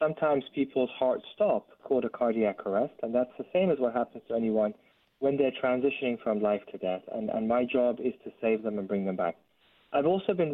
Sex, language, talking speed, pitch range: male, English, 220 wpm, 105-140 Hz